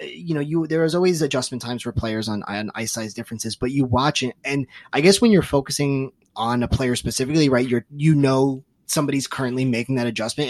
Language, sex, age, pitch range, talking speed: English, male, 20-39, 115-145 Hz, 210 wpm